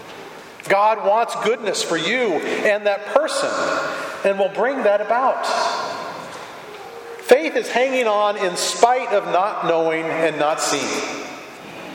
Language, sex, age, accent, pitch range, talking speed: English, male, 40-59, American, 170-235 Hz, 125 wpm